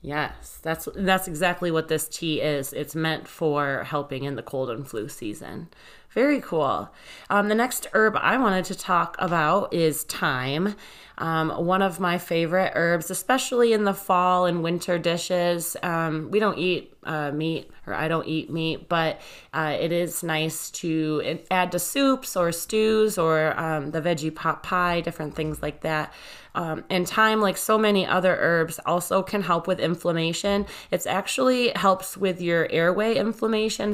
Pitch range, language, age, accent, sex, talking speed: 160-190 Hz, English, 20-39, American, female, 170 wpm